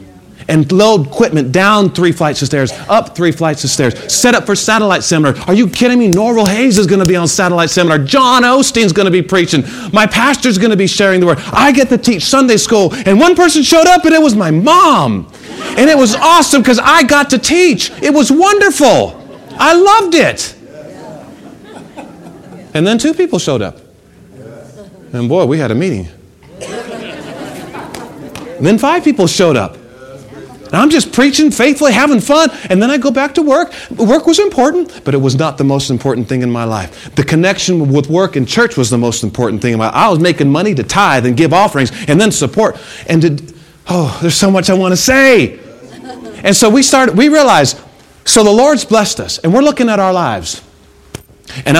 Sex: male